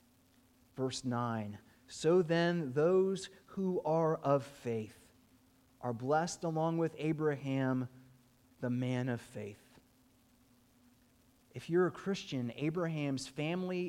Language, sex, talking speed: English, male, 105 wpm